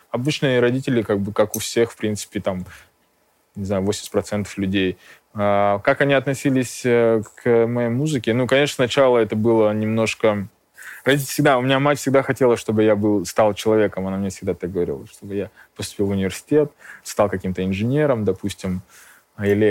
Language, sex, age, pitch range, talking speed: Russian, male, 20-39, 105-135 Hz, 160 wpm